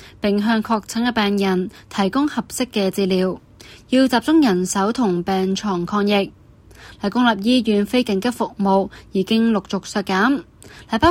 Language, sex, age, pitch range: Chinese, female, 20-39, 190-230 Hz